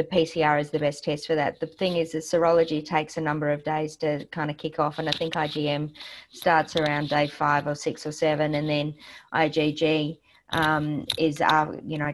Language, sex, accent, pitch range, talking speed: English, female, Australian, 150-165 Hz, 215 wpm